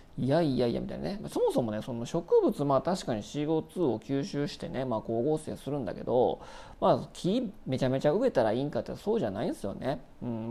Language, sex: Japanese, male